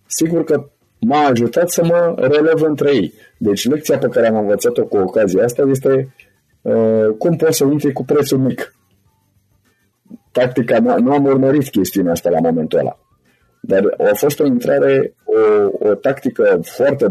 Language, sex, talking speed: Romanian, male, 155 wpm